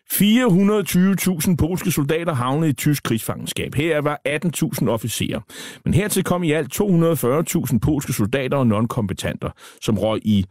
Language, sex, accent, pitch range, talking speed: Danish, male, native, 115-165 Hz, 135 wpm